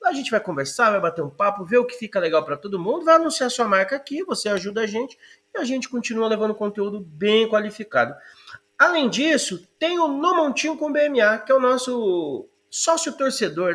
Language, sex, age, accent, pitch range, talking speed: Portuguese, male, 30-49, Brazilian, 180-250 Hz, 200 wpm